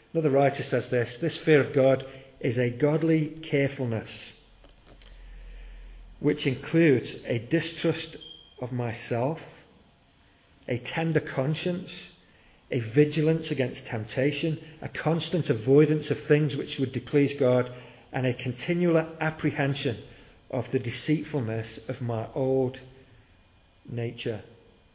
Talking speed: 110 wpm